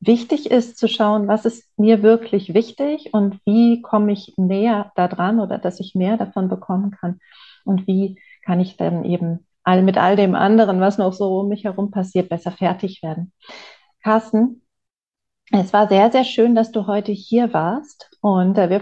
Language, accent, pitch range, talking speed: German, German, 185-225 Hz, 175 wpm